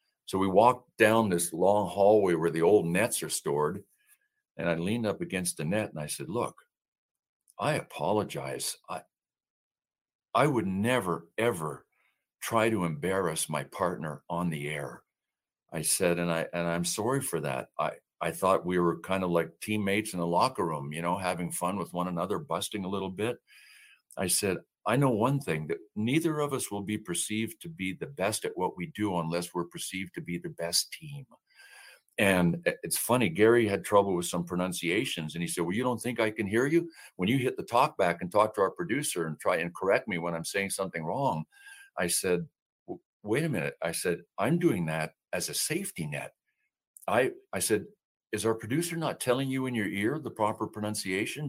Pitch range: 85-130 Hz